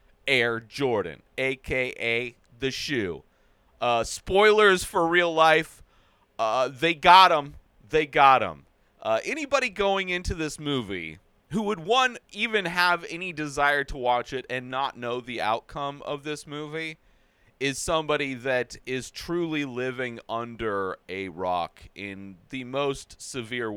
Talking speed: 145 wpm